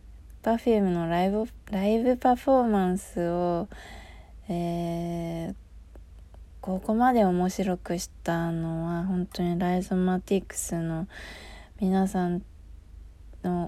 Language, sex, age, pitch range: Japanese, female, 20-39, 170-205 Hz